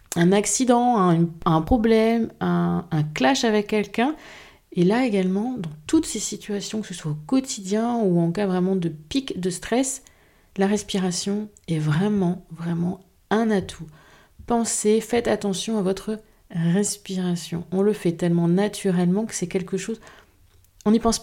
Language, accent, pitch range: French, French, 170-215 Hz